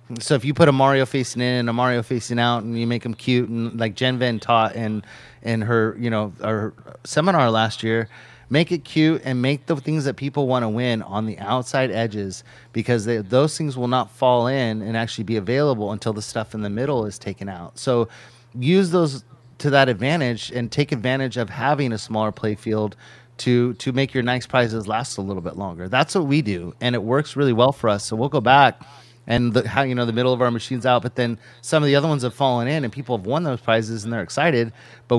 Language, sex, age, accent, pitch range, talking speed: English, male, 30-49, American, 110-130 Hz, 235 wpm